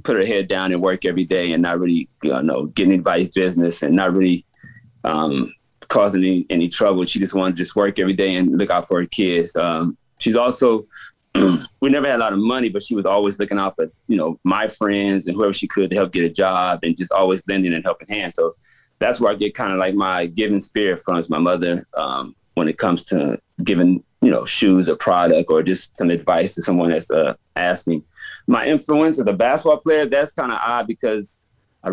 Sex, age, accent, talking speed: male, 30-49, American, 230 wpm